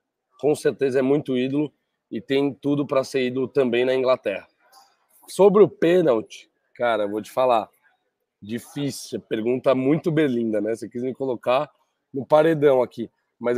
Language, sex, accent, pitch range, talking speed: Portuguese, male, Brazilian, 125-155 Hz, 155 wpm